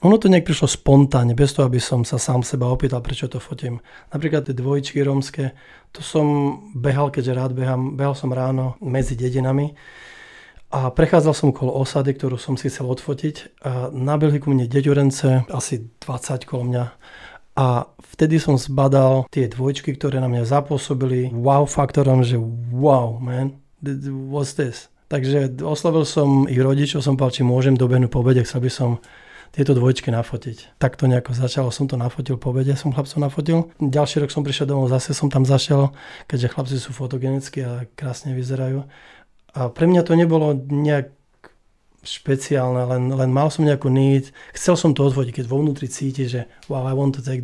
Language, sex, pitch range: Slovak, male, 130-145 Hz